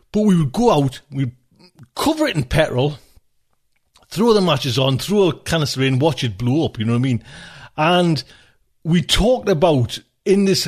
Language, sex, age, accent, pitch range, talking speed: English, male, 40-59, British, 125-175 Hz, 185 wpm